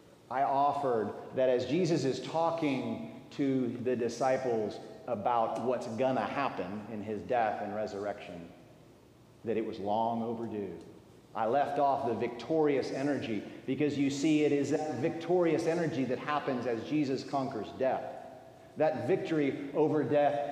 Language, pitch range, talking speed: English, 115-150 Hz, 145 wpm